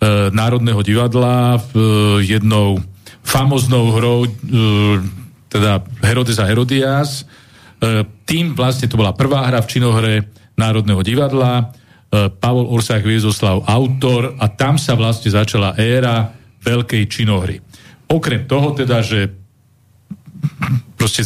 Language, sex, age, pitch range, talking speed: Slovak, male, 40-59, 105-125 Hz, 100 wpm